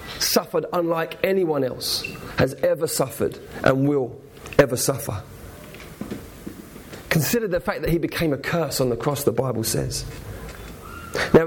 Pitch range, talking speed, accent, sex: 115-145 Hz, 135 wpm, British, male